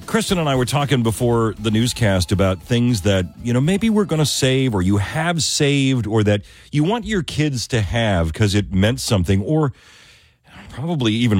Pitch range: 90-125 Hz